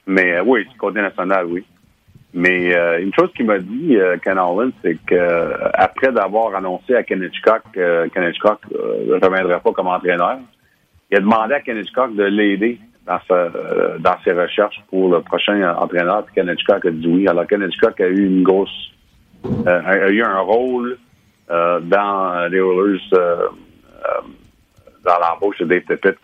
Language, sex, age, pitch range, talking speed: French, male, 50-69, 90-110 Hz, 180 wpm